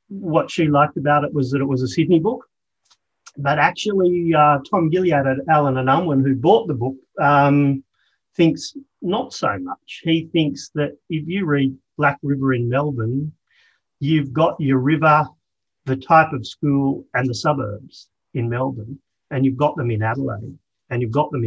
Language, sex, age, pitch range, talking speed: English, male, 40-59, 110-145 Hz, 175 wpm